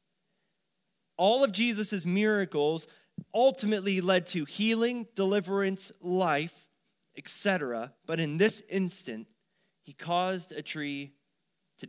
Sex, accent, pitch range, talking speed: male, American, 140-185 Hz, 100 wpm